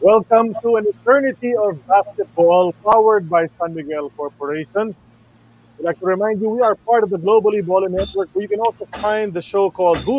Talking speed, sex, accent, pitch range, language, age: 195 wpm, male, Filipino, 145-195 Hz, English, 30-49